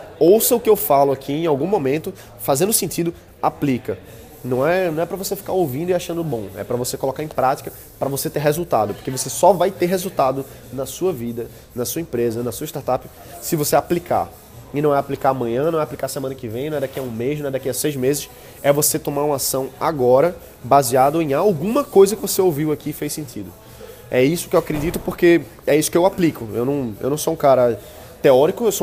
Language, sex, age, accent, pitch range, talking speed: Portuguese, male, 20-39, Brazilian, 130-165 Hz, 235 wpm